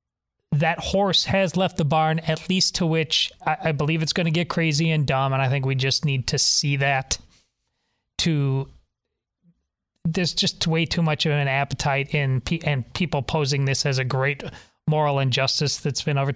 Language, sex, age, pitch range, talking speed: English, male, 30-49, 140-175 Hz, 190 wpm